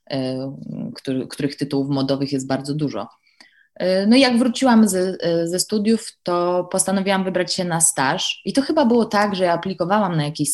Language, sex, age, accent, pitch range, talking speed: Polish, female, 20-39, native, 150-205 Hz, 165 wpm